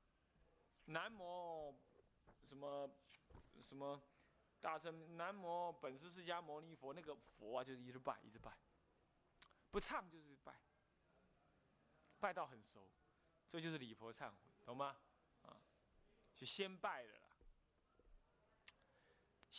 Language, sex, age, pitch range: Chinese, male, 20-39, 125-185 Hz